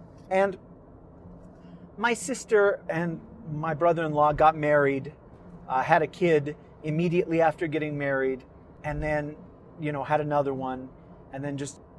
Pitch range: 150-200 Hz